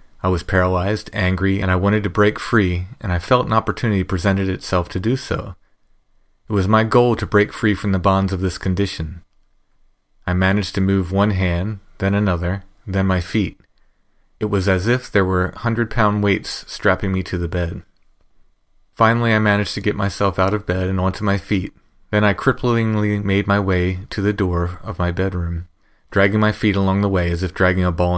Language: English